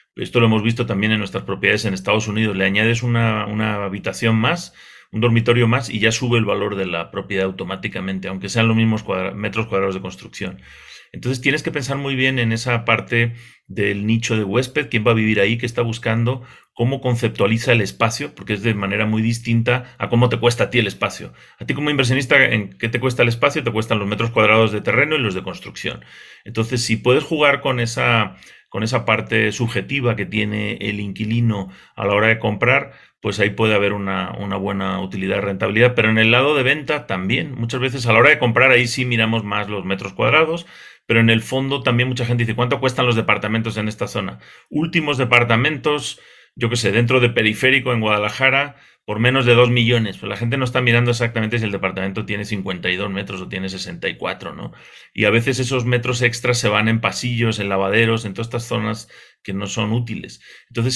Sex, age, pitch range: male, 40-59, 105-125 Hz